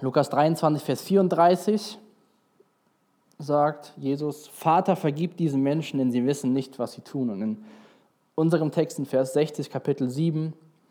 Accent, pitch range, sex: German, 130-165 Hz, male